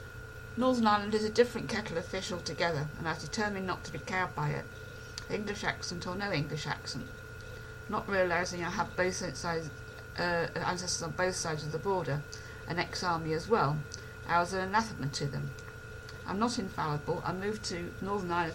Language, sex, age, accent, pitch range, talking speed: English, female, 50-69, British, 145-200 Hz, 185 wpm